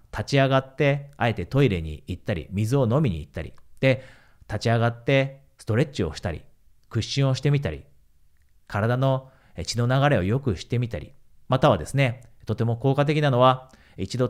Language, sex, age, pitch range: Japanese, male, 40-59, 110-145 Hz